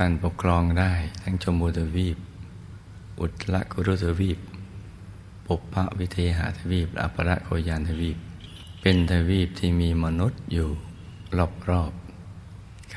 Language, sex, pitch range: Thai, male, 80-95 Hz